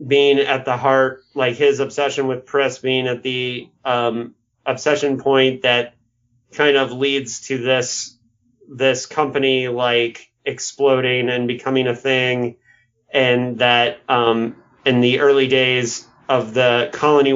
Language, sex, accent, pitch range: English, male, American, 120-145 Hz